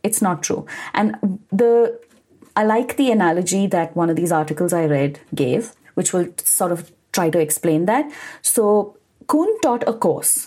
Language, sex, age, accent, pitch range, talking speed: English, female, 30-49, Indian, 165-225 Hz, 170 wpm